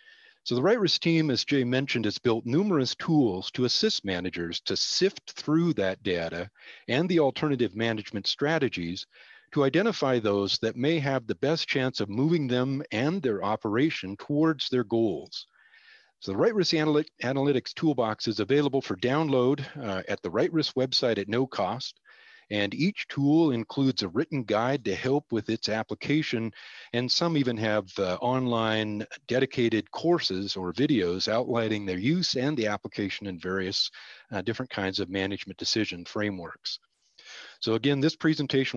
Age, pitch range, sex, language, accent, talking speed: 40-59, 105-150 Hz, male, English, American, 155 wpm